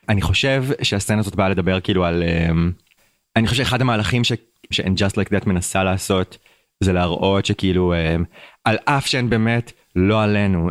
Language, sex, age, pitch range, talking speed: Hebrew, male, 30-49, 95-115 Hz, 150 wpm